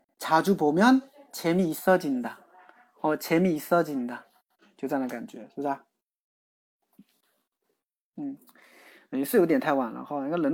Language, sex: Chinese, male